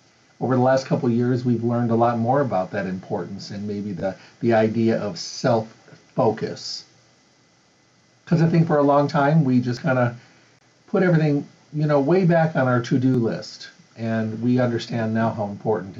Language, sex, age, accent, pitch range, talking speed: English, male, 50-69, American, 115-140 Hz, 180 wpm